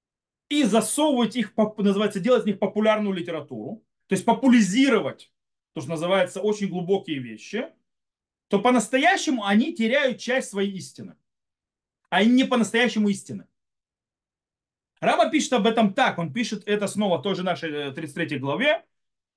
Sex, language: male, Russian